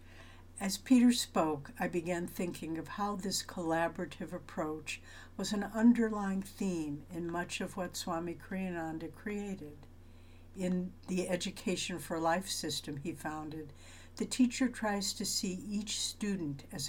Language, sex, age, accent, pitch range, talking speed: English, female, 60-79, American, 150-185 Hz, 135 wpm